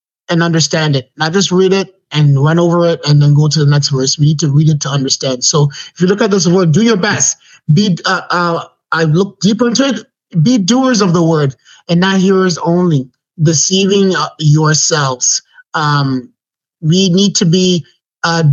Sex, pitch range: male, 155-195 Hz